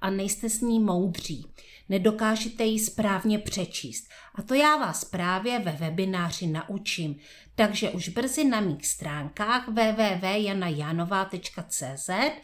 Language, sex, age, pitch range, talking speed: Czech, female, 40-59, 180-230 Hz, 115 wpm